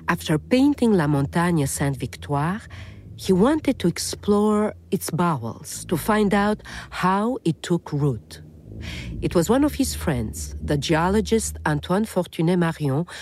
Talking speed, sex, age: 135 wpm, female, 50-69